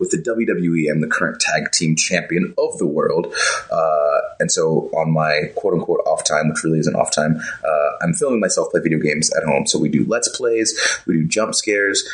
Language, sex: English, male